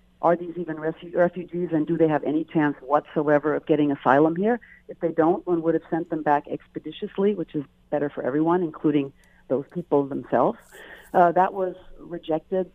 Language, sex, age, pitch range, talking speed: English, female, 50-69, 155-180 Hz, 180 wpm